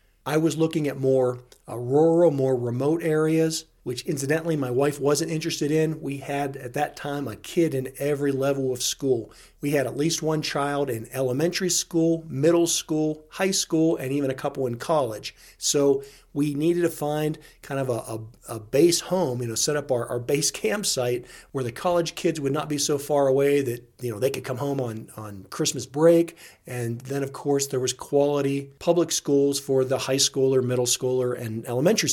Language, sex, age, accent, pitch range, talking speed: English, male, 40-59, American, 130-155 Hz, 200 wpm